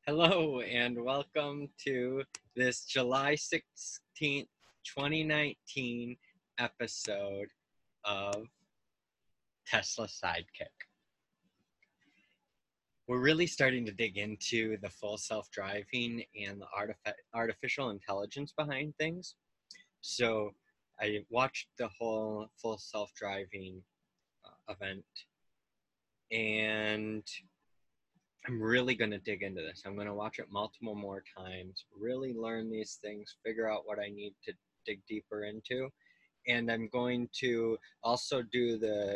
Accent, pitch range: American, 105-120 Hz